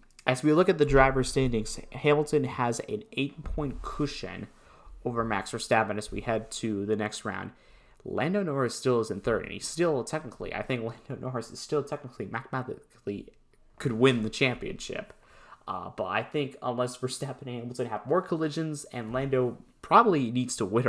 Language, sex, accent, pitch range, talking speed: English, male, American, 110-135 Hz, 175 wpm